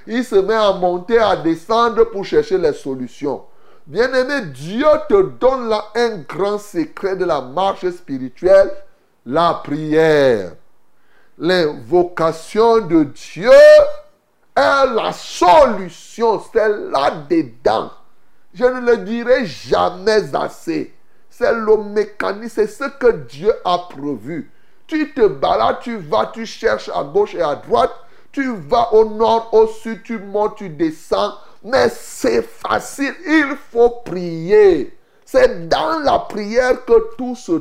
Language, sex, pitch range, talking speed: French, male, 180-275 Hz, 130 wpm